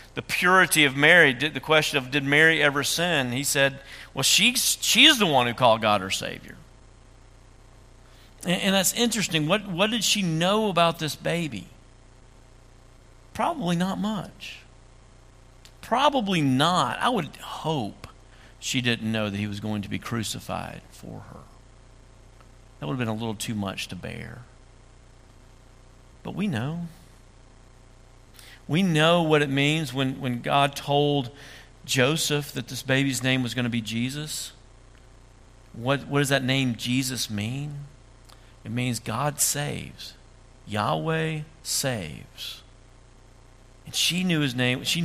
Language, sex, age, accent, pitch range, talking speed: English, male, 50-69, American, 125-150 Hz, 140 wpm